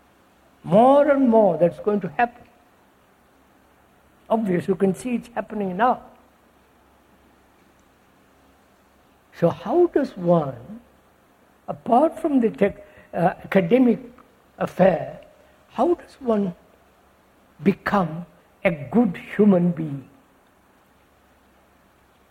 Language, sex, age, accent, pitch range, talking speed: English, male, 60-79, Indian, 135-220 Hz, 90 wpm